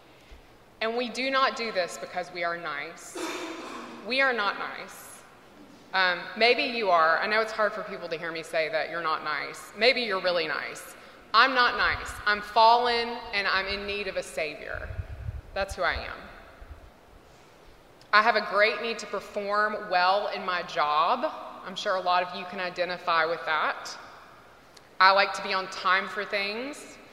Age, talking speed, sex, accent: 20-39, 180 wpm, female, American